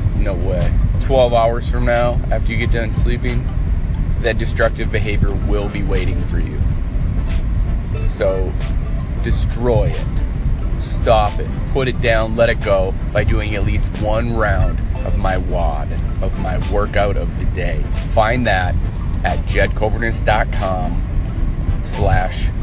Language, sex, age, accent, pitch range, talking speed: English, male, 30-49, American, 90-110 Hz, 125 wpm